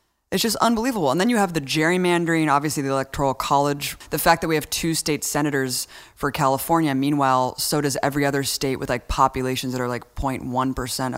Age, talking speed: 20-39, 195 wpm